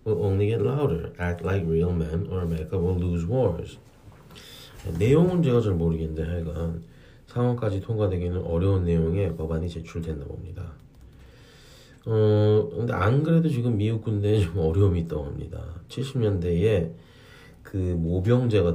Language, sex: Korean, male